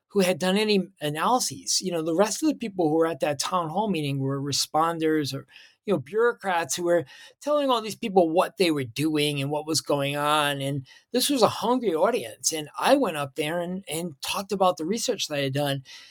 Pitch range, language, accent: 145-195 Hz, English, American